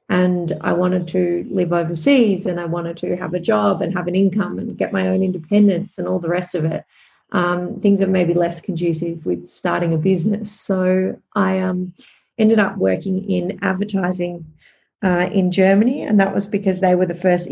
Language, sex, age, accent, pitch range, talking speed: English, female, 30-49, Australian, 175-200 Hz, 195 wpm